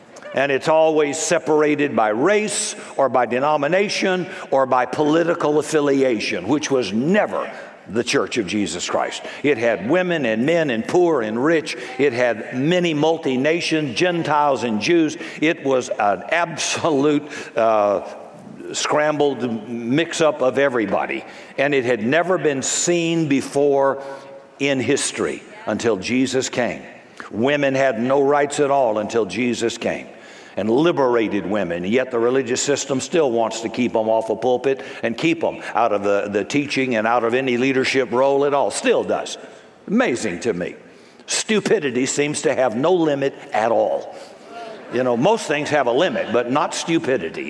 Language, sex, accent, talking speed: English, male, American, 155 wpm